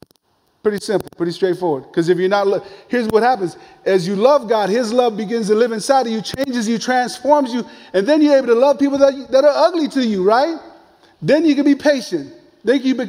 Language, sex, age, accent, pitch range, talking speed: English, male, 30-49, American, 170-225 Hz, 220 wpm